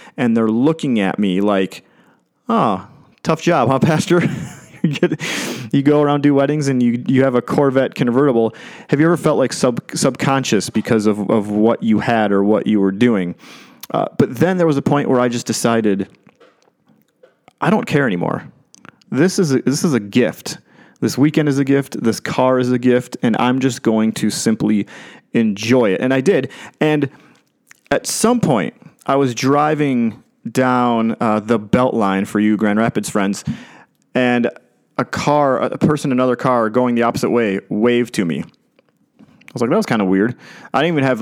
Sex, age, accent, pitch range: male, 30-49, American, 115-145 Hz